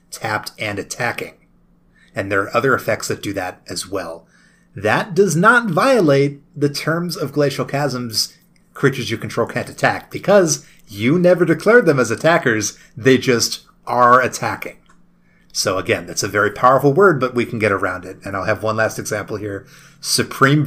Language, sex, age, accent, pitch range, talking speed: English, male, 30-49, American, 110-170 Hz, 170 wpm